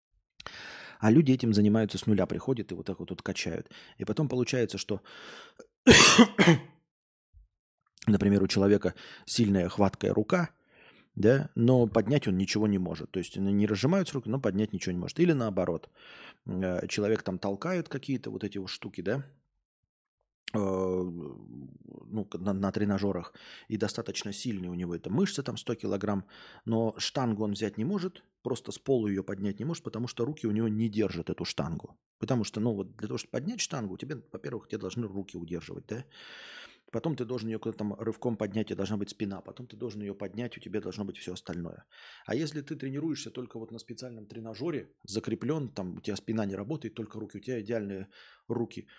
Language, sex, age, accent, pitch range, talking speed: Russian, male, 20-39, native, 100-125 Hz, 185 wpm